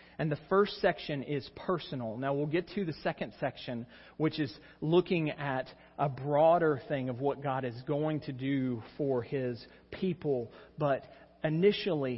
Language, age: English, 40-59